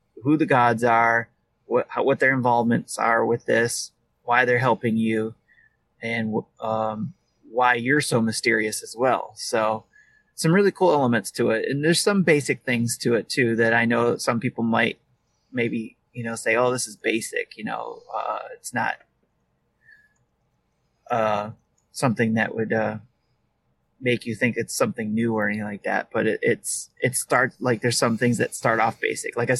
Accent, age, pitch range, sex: American, 30-49, 115-125 Hz, male